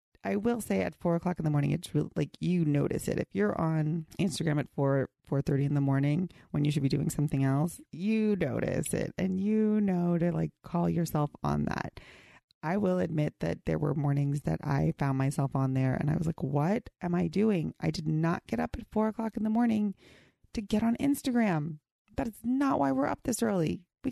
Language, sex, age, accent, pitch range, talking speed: English, female, 30-49, American, 150-215 Hz, 220 wpm